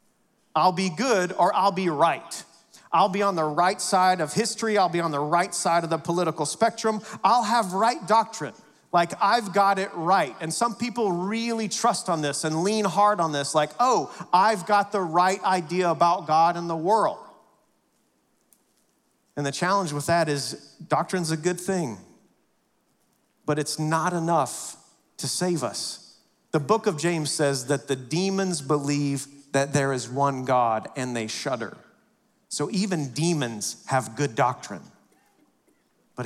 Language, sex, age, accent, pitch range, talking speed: English, male, 40-59, American, 145-190 Hz, 165 wpm